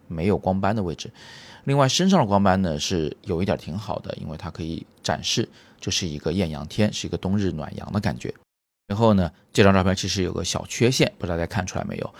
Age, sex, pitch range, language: 30-49, male, 90-110 Hz, Chinese